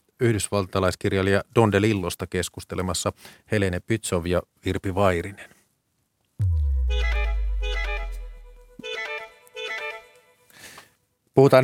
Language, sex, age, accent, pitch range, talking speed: Finnish, male, 30-49, native, 90-115 Hz, 50 wpm